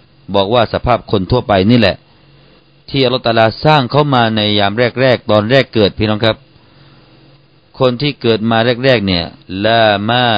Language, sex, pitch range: Thai, male, 95-130 Hz